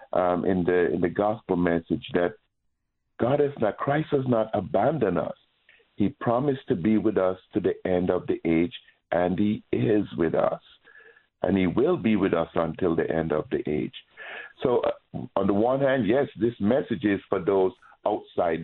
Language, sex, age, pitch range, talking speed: English, male, 60-79, 90-115 Hz, 185 wpm